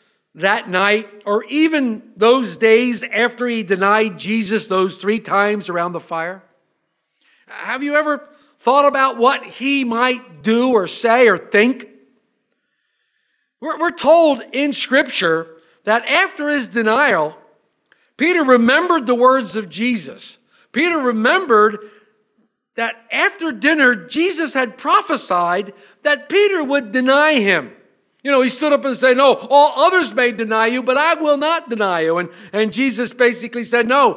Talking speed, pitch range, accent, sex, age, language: 140 wpm, 200-275 Hz, American, male, 50-69, English